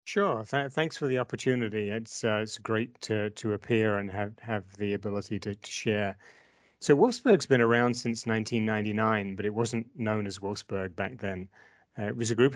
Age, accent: 40-59, British